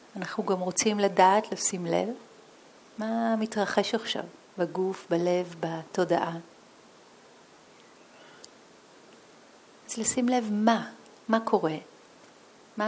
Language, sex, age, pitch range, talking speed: Hebrew, female, 40-59, 170-210 Hz, 90 wpm